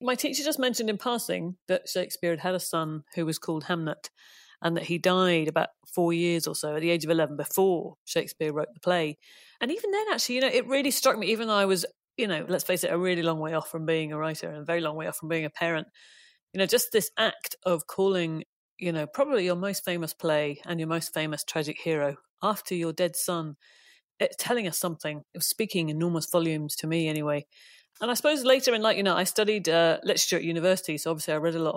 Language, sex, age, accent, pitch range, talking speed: English, female, 40-59, British, 160-210 Hz, 245 wpm